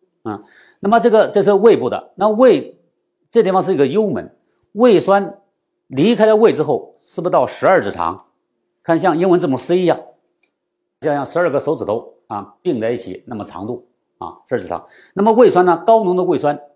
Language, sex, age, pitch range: Chinese, male, 50-69, 165-230 Hz